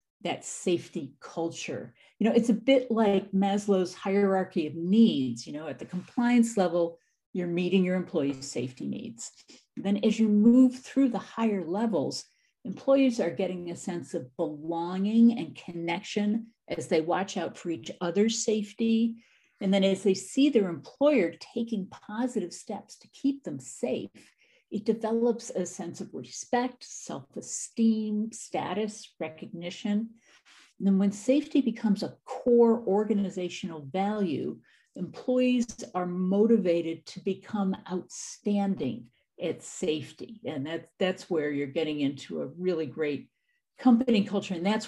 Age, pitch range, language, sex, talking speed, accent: 50-69, 170-225 Hz, English, female, 135 wpm, American